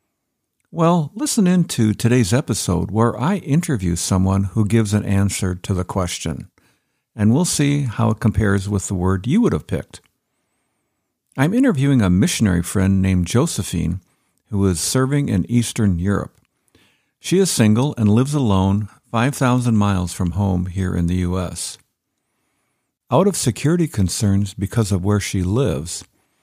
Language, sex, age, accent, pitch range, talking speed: English, male, 50-69, American, 90-125 Hz, 150 wpm